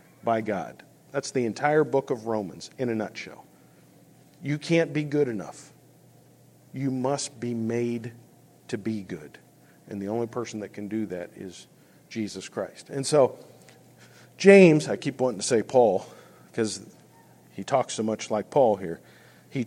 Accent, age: American, 50-69